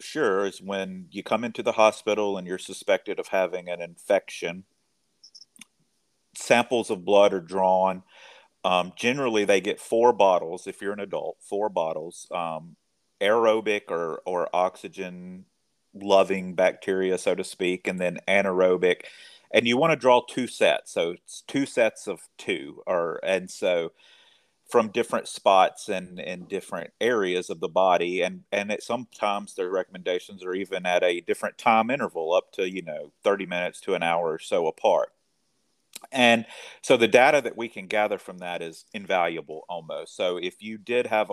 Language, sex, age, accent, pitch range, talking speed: English, male, 30-49, American, 90-110 Hz, 165 wpm